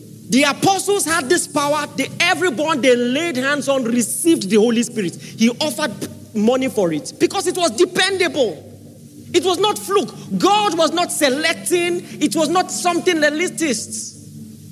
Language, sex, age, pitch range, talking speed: English, male, 40-59, 235-365 Hz, 150 wpm